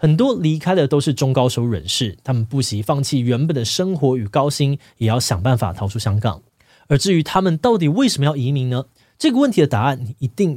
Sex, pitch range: male, 120-160 Hz